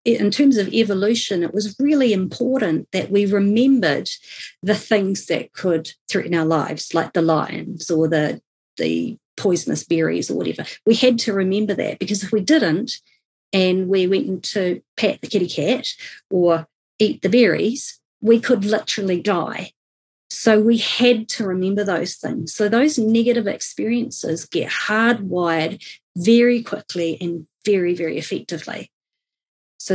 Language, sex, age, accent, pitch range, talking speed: English, female, 40-59, Australian, 180-235 Hz, 145 wpm